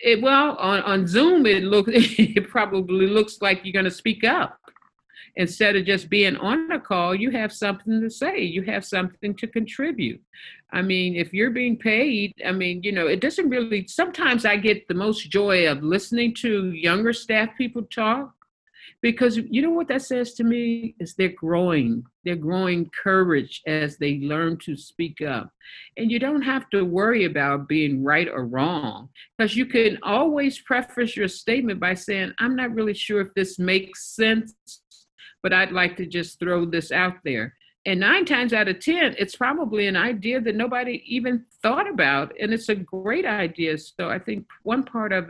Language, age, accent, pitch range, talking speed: English, 50-69, American, 175-230 Hz, 185 wpm